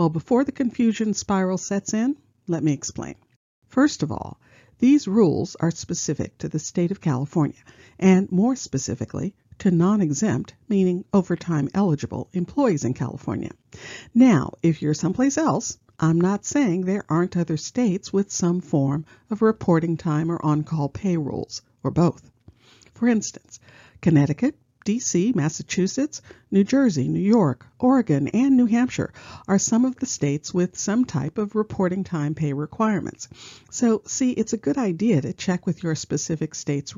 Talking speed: 155 wpm